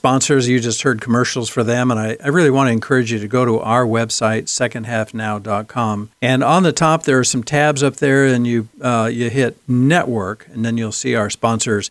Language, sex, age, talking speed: English, male, 60-79, 215 wpm